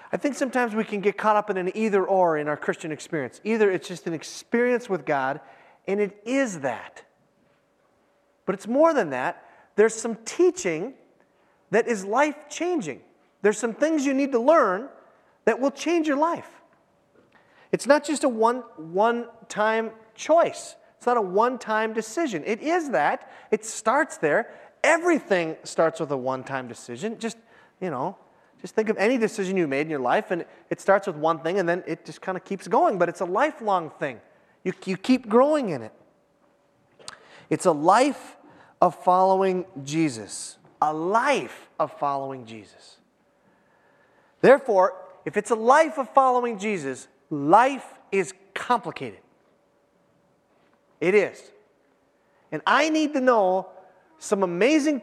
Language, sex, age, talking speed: English, male, 30-49, 155 wpm